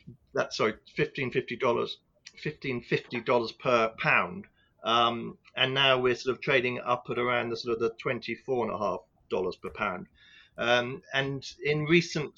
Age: 40-59